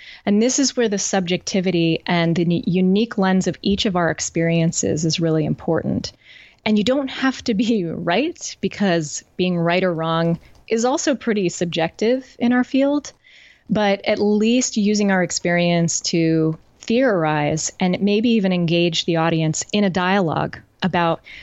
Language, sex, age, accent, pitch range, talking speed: English, female, 30-49, American, 170-215 Hz, 155 wpm